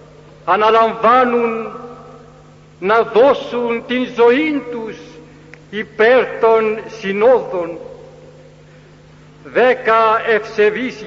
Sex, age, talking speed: male, 60-79, 60 wpm